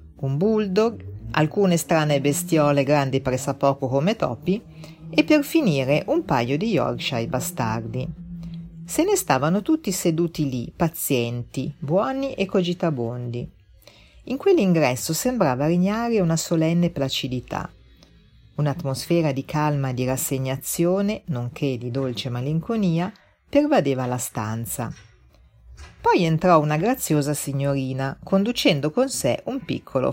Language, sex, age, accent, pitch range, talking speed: Italian, female, 40-59, native, 130-185 Hz, 115 wpm